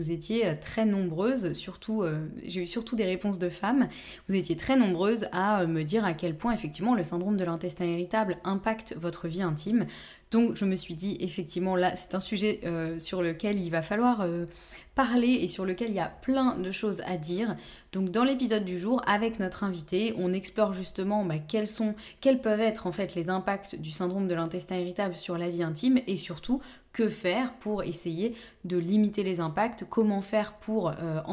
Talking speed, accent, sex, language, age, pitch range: 200 wpm, French, female, French, 20-39, 175-225 Hz